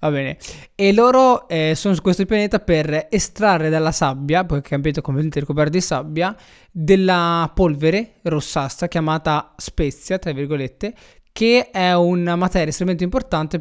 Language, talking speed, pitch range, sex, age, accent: Italian, 145 wpm, 145-180 Hz, male, 20-39, native